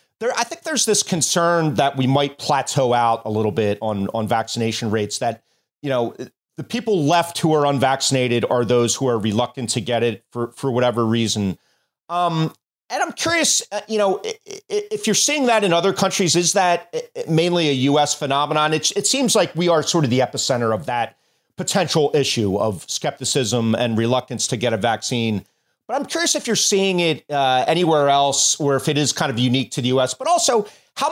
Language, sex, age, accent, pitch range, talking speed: English, male, 30-49, American, 125-170 Hz, 200 wpm